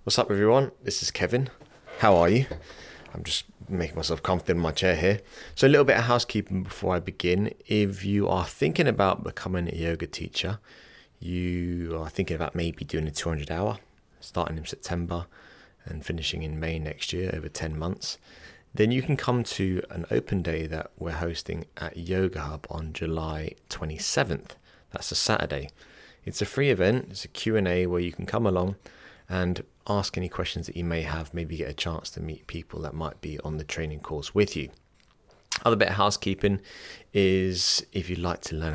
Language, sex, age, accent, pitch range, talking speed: English, male, 30-49, British, 80-95 Hz, 190 wpm